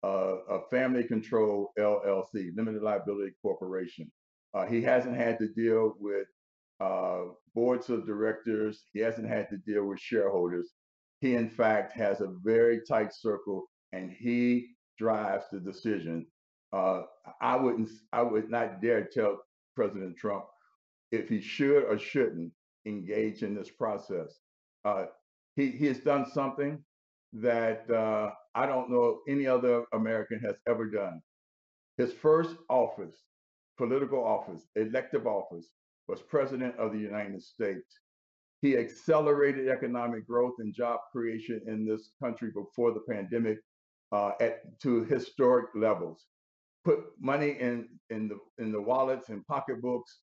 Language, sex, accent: English, male, American